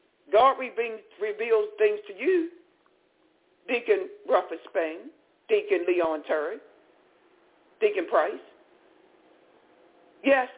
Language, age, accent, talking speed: English, 60-79, American, 80 wpm